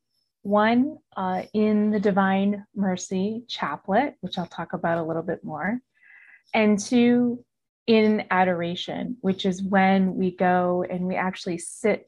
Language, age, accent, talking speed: English, 30-49, American, 140 wpm